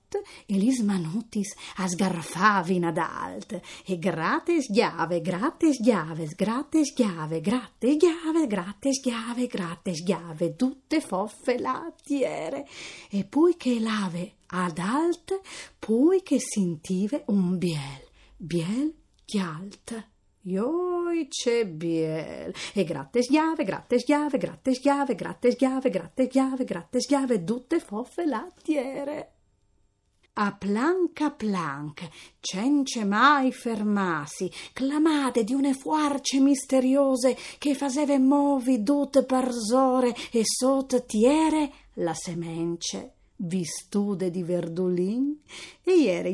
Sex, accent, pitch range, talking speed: female, native, 185-280 Hz, 100 wpm